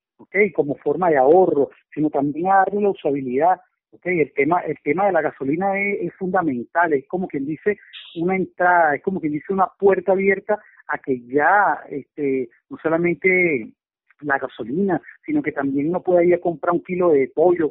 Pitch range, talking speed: 150-190 Hz, 185 wpm